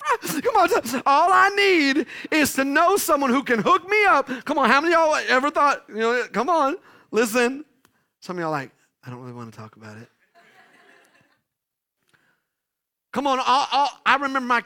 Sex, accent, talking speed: male, American, 185 wpm